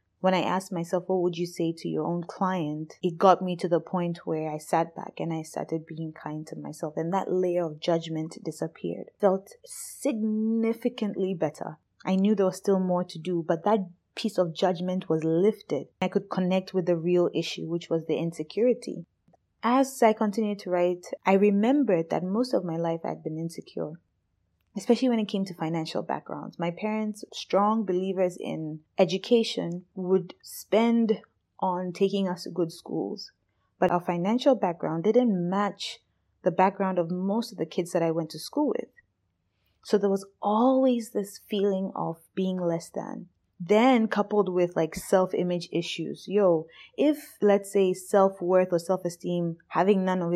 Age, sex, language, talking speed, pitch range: 20-39, female, English, 175 wpm, 170-210 Hz